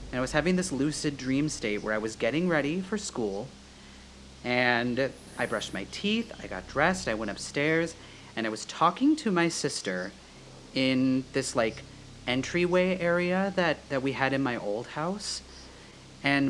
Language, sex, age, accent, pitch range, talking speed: English, male, 30-49, American, 100-140 Hz, 170 wpm